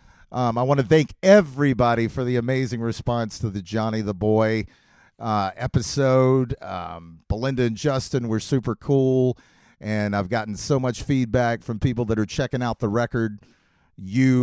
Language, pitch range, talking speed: English, 110-135 Hz, 160 wpm